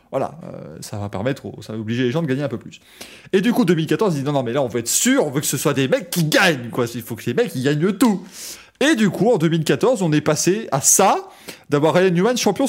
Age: 20-39